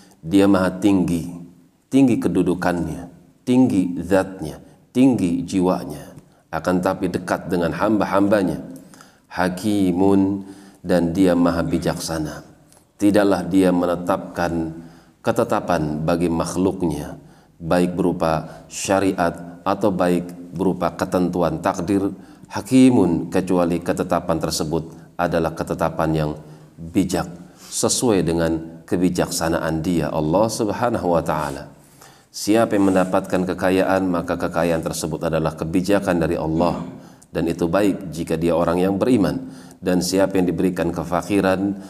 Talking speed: 105 wpm